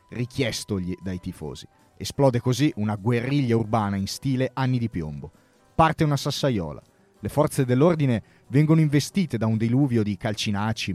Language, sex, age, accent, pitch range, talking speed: Italian, male, 30-49, native, 105-140 Hz, 140 wpm